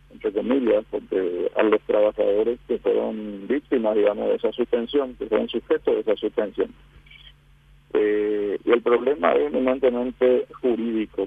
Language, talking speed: Spanish, 135 wpm